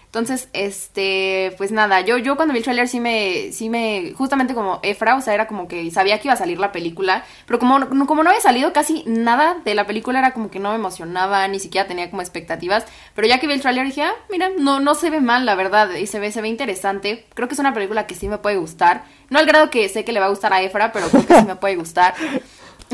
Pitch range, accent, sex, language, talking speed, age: 185-250 Hz, Mexican, female, Spanish, 265 wpm, 20-39